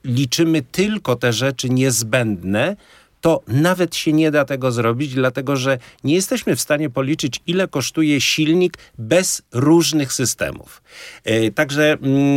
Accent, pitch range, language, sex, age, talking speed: native, 115-145 Hz, Polish, male, 50-69, 125 wpm